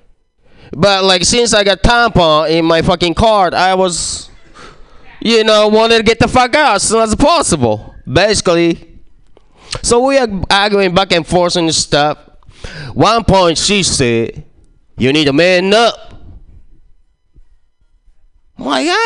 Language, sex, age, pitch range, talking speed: English, male, 20-39, 140-210 Hz, 140 wpm